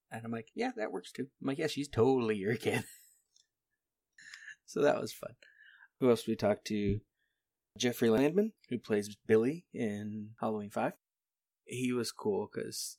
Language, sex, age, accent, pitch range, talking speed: English, male, 20-39, American, 95-120 Hz, 165 wpm